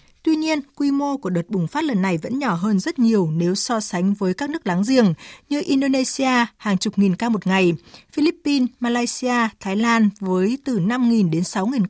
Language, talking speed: Vietnamese, 200 wpm